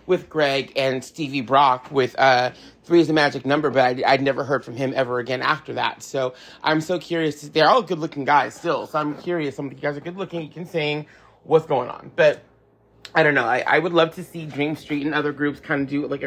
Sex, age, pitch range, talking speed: male, 30-49, 140-160 Hz, 245 wpm